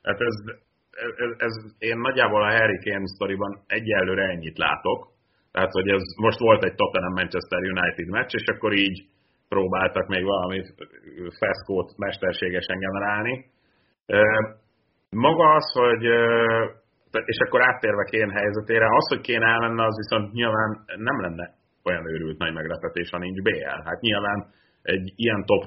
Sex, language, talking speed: male, Hungarian, 145 wpm